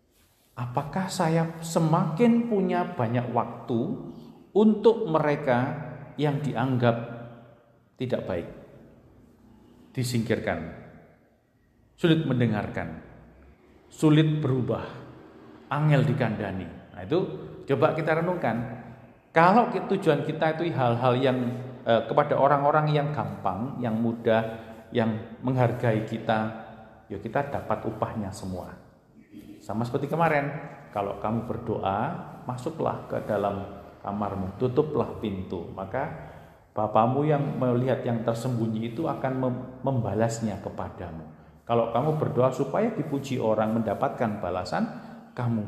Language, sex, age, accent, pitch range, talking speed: Indonesian, male, 50-69, native, 110-135 Hz, 100 wpm